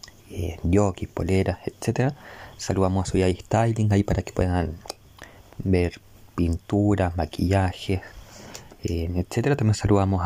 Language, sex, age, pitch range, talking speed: Spanish, male, 20-39, 90-105 Hz, 115 wpm